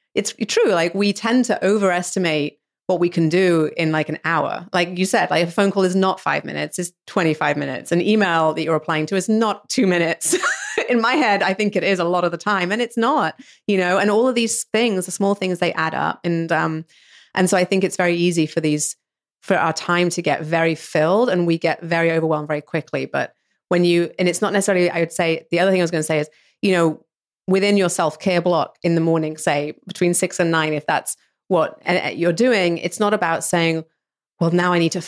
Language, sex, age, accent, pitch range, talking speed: English, female, 30-49, British, 160-190 Hz, 240 wpm